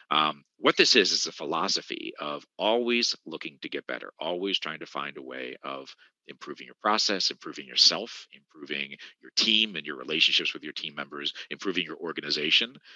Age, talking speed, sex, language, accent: 40-59, 175 wpm, male, English, American